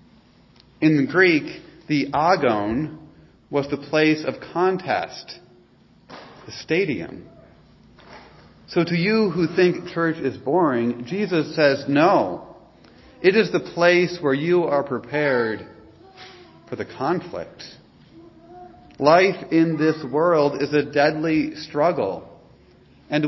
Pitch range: 135-170 Hz